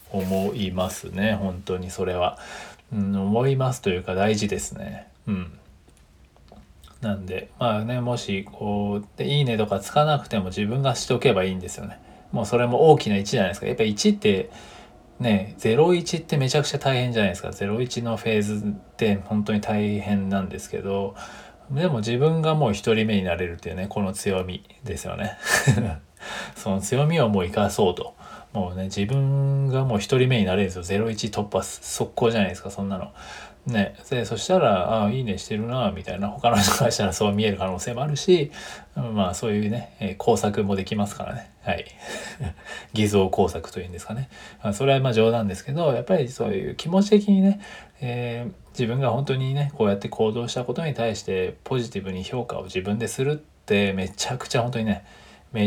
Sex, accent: male, native